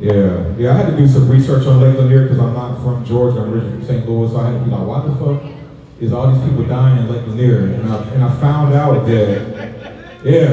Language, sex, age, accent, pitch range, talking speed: English, male, 30-49, American, 115-130 Hz, 260 wpm